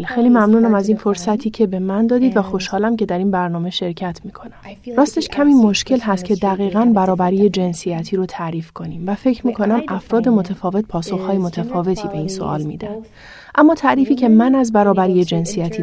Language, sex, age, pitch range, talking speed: Persian, female, 30-49, 180-220 Hz, 175 wpm